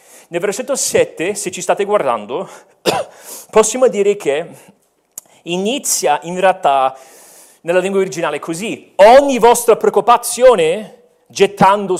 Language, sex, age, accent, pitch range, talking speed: Italian, male, 40-59, native, 165-230 Hz, 105 wpm